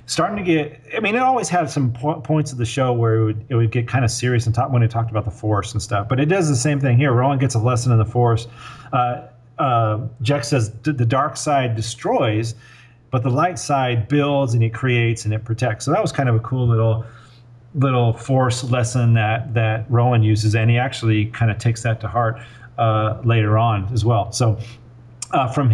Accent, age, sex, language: American, 40-59, male, English